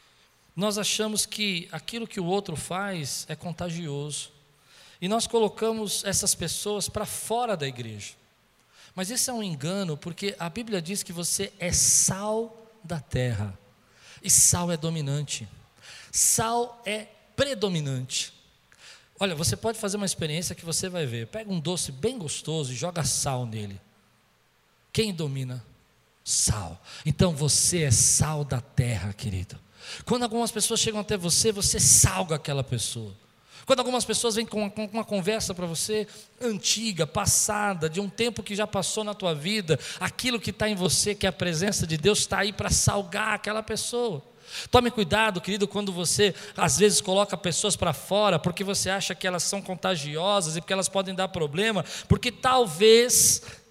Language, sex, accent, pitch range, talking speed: Portuguese, male, Brazilian, 150-210 Hz, 160 wpm